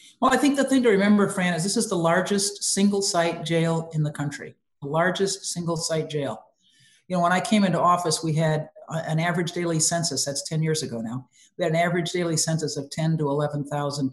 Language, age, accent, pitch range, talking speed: English, 50-69, American, 150-180 Hz, 220 wpm